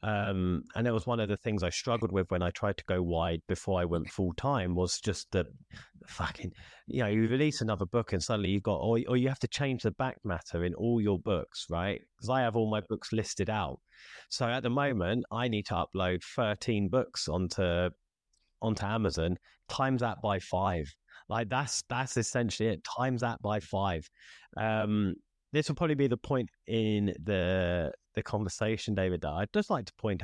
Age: 30-49